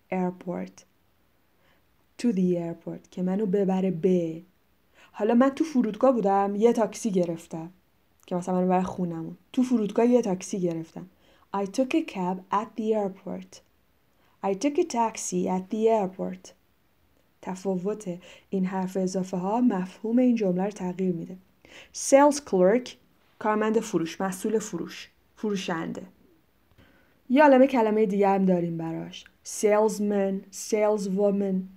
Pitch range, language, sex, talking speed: 185-225 Hz, Persian, female, 125 wpm